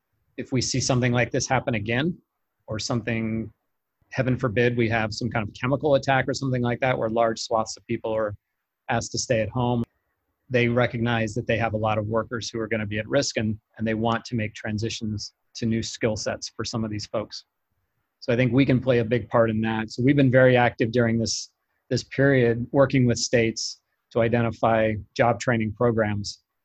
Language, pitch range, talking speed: English, 110-125 Hz, 210 wpm